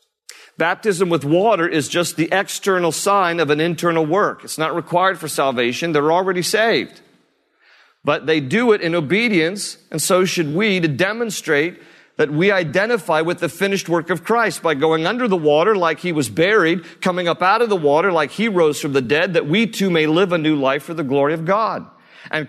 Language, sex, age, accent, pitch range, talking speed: English, male, 50-69, American, 140-185 Hz, 205 wpm